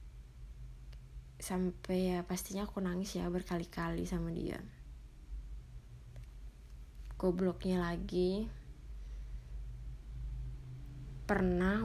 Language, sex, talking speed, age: Indonesian, female, 60 wpm, 20-39